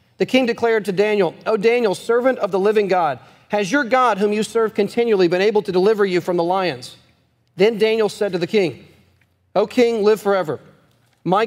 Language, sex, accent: English, male, American